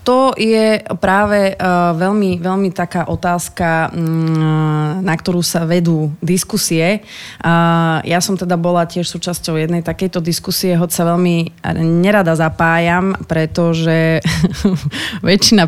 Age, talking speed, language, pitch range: 20-39, 105 wpm, Slovak, 160-185 Hz